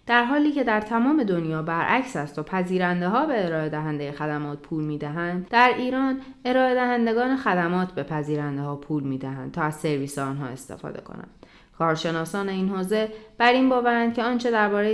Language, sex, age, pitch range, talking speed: Persian, female, 20-39, 155-220 Hz, 160 wpm